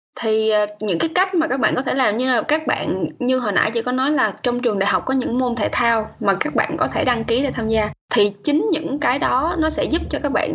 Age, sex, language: 10-29, female, Vietnamese